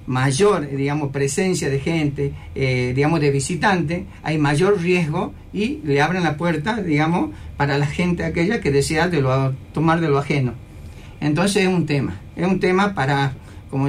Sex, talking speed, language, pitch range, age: male, 165 wpm, Spanish, 135-185 Hz, 50-69